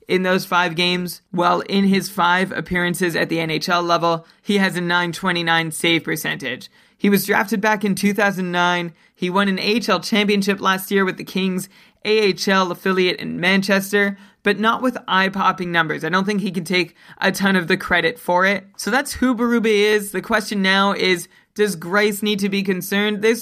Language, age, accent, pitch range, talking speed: English, 20-39, American, 180-210 Hz, 185 wpm